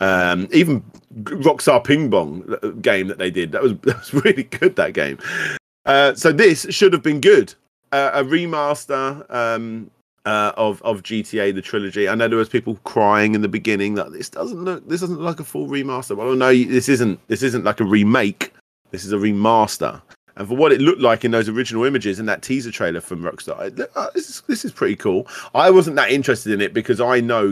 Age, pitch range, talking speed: 30-49, 100-135 Hz, 220 wpm